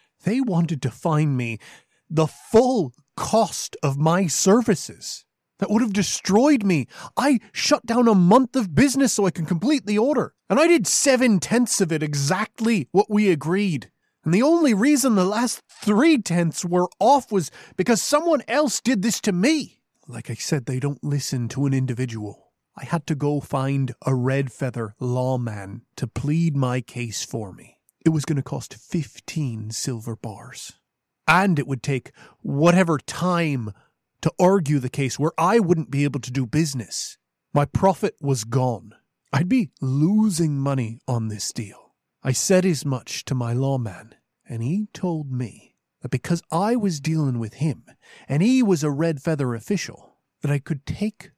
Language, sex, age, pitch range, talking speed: English, male, 30-49, 130-200 Hz, 170 wpm